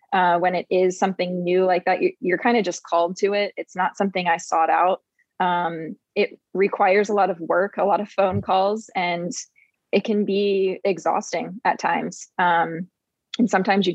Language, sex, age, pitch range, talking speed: English, female, 20-39, 175-200 Hz, 190 wpm